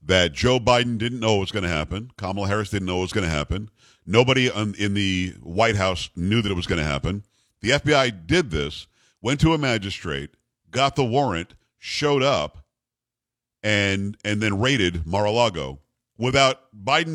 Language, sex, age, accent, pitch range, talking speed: English, male, 50-69, American, 100-130 Hz, 180 wpm